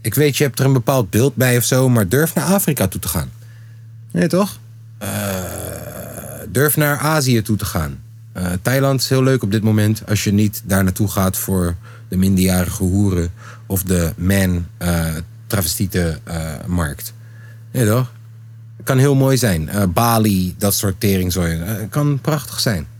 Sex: male